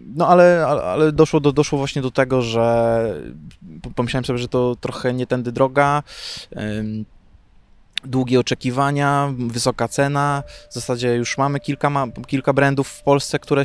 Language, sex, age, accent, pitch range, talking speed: Polish, male, 20-39, native, 120-155 Hz, 140 wpm